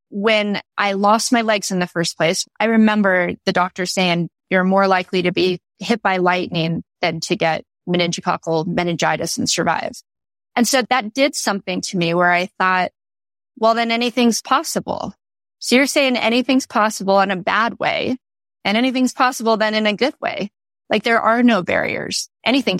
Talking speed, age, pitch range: 175 wpm, 20-39, 185-230 Hz